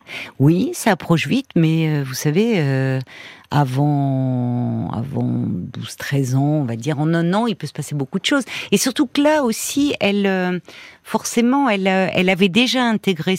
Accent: French